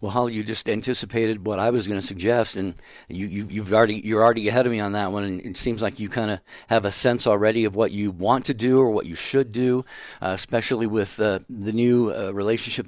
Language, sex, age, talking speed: English, male, 50-69, 265 wpm